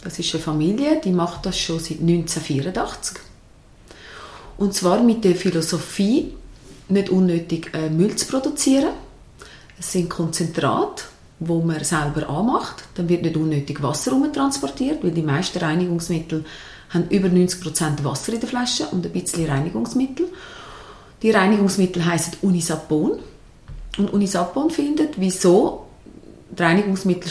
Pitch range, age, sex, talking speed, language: 160-230 Hz, 30-49, female, 125 wpm, German